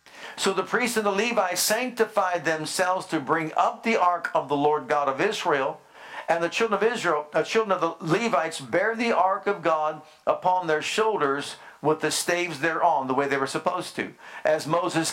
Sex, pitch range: male, 165-205 Hz